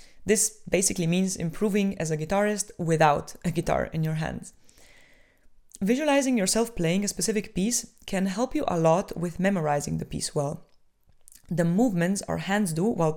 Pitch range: 170-215 Hz